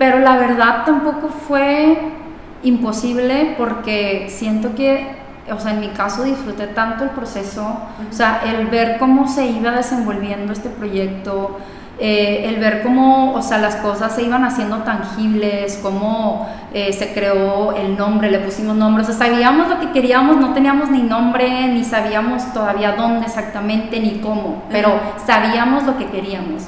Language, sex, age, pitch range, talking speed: Spanish, female, 30-49, 210-255 Hz, 160 wpm